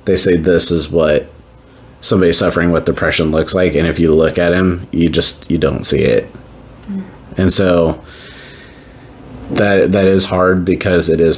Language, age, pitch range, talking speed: English, 30-49, 80-100 Hz, 170 wpm